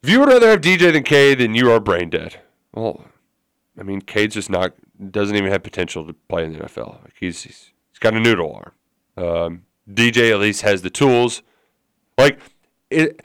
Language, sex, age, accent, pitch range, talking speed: English, male, 30-49, American, 100-145 Hz, 190 wpm